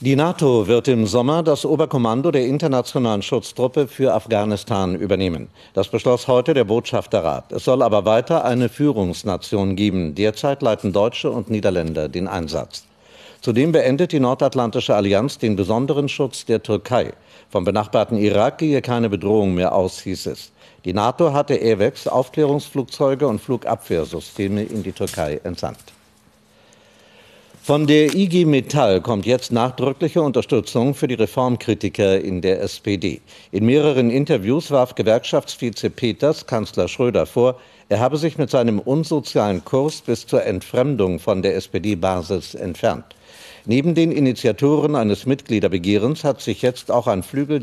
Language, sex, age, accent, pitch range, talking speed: German, male, 50-69, German, 105-140 Hz, 140 wpm